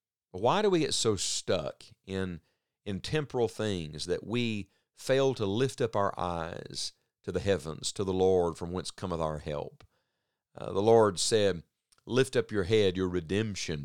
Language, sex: English, male